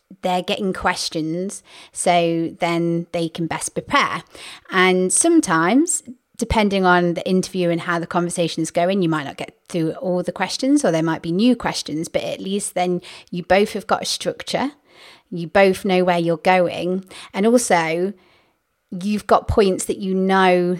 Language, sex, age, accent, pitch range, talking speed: English, female, 30-49, British, 175-205 Hz, 170 wpm